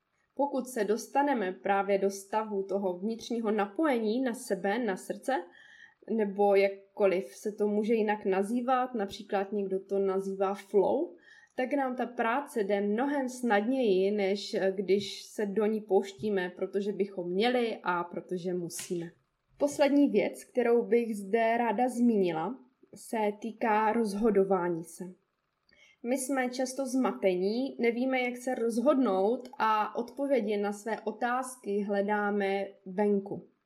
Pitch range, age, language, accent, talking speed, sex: 200-255 Hz, 20-39, Czech, native, 125 wpm, female